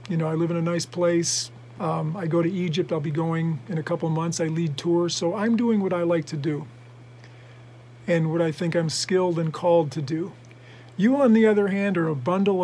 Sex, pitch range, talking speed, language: male, 150-190 Hz, 240 wpm, English